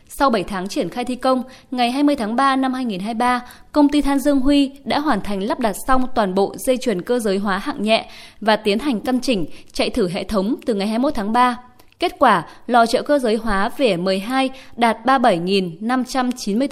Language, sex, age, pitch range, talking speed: Vietnamese, female, 20-39, 210-270 Hz, 210 wpm